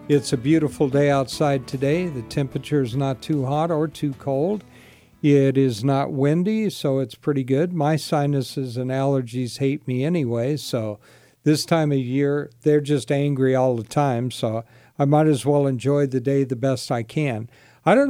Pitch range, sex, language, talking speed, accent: 130-155 Hz, male, English, 180 wpm, American